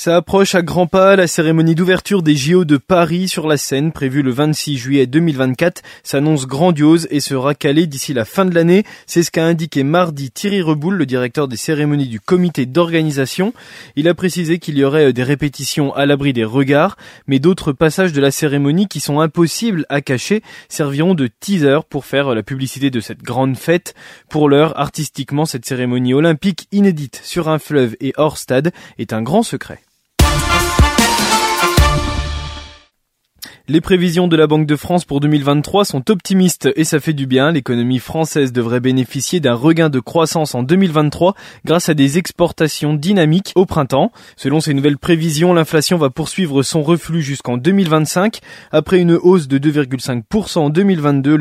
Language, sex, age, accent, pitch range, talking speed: French, male, 20-39, French, 135-175 Hz, 170 wpm